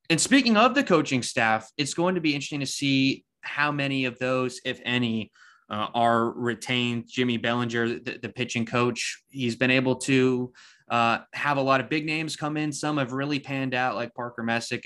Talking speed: 200 wpm